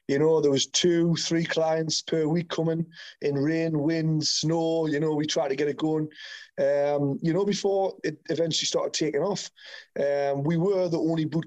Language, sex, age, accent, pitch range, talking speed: English, male, 30-49, British, 145-165 Hz, 195 wpm